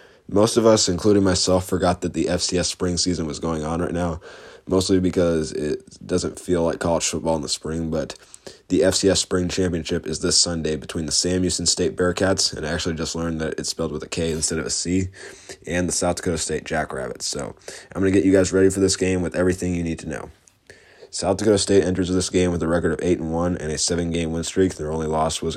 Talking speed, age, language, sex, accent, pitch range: 235 wpm, 20-39, English, male, American, 80-95 Hz